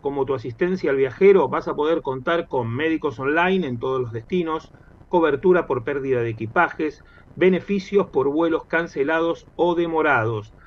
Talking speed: 150 wpm